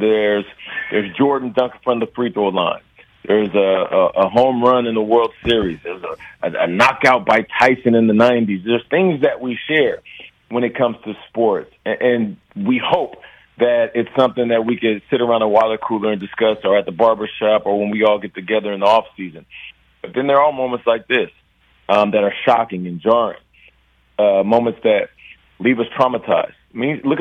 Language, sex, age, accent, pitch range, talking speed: English, male, 40-59, American, 105-125 Hz, 205 wpm